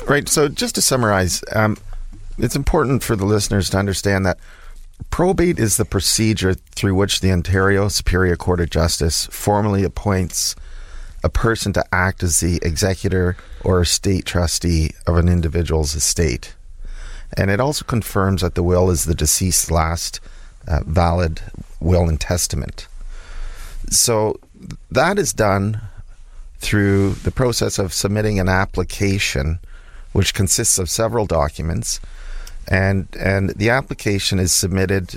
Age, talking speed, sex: 40-59, 135 wpm, male